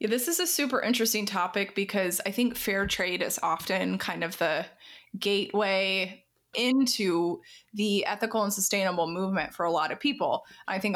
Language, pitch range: English, 180-220 Hz